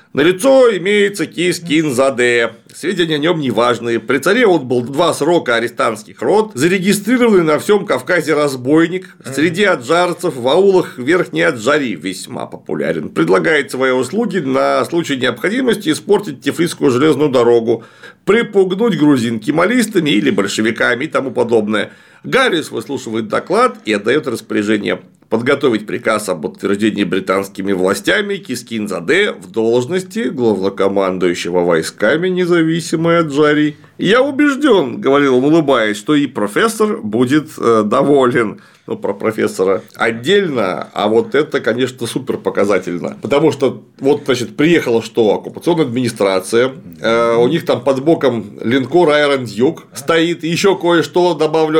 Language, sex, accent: Russian, male, native